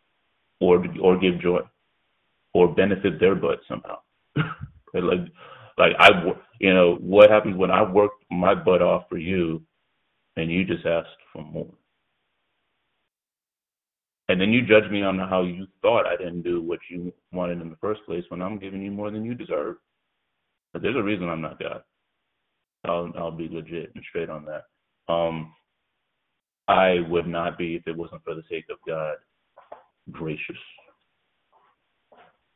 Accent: American